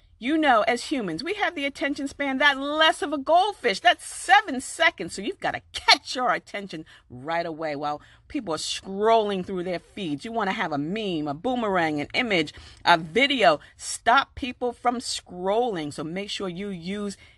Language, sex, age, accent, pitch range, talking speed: English, female, 40-59, American, 165-270 Hz, 185 wpm